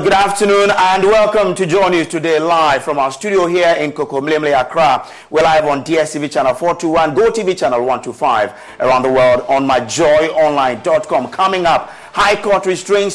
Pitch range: 135-185 Hz